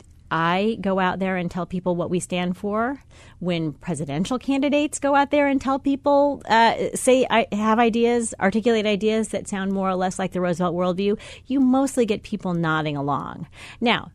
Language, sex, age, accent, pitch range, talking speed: English, female, 30-49, American, 155-205 Hz, 180 wpm